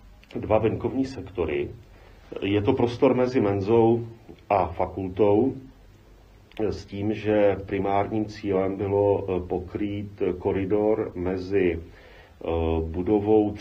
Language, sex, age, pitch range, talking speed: Czech, male, 40-59, 85-105 Hz, 90 wpm